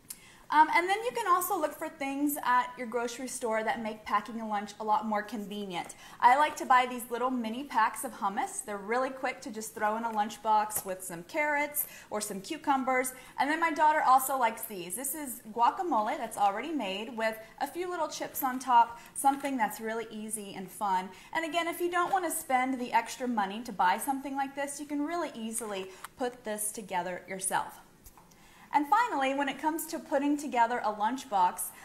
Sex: female